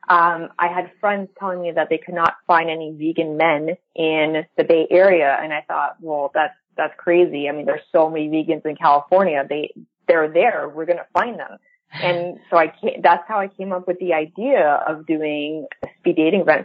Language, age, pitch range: English, 20-39, 155-190 Hz